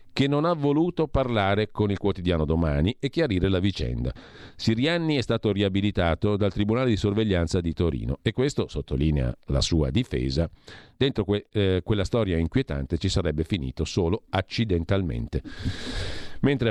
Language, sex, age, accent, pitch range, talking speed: Italian, male, 50-69, native, 85-115 Hz, 145 wpm